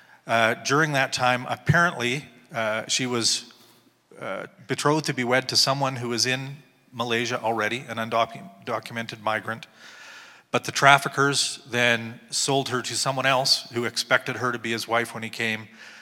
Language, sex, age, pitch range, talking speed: English, male, 40-59, 115-135 Hz, 155 wpm